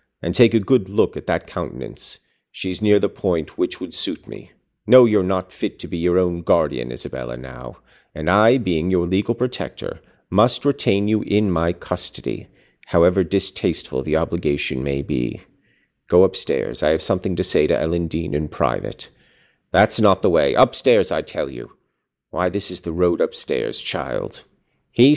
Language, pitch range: English, 85-110 Hz